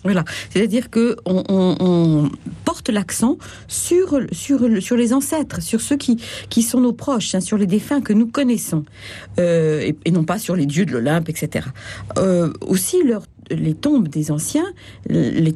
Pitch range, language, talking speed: 170-245 Hz, French, 175 wpm